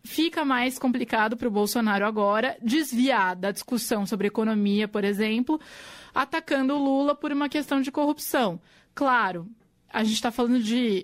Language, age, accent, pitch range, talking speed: Portuguese, 20-39, Brazilian, 215-265 Hz, 160 wpm